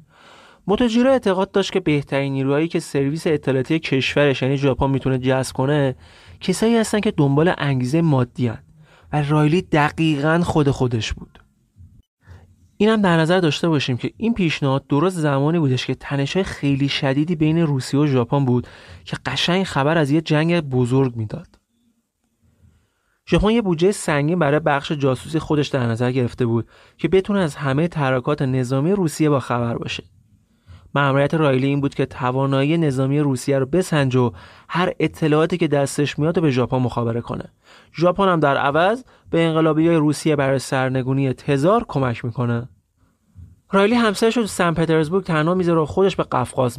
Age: 30-49